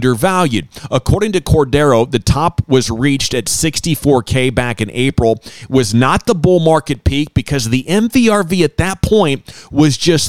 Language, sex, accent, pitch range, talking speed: English, male, American, 110-145 Hz, 165 wpm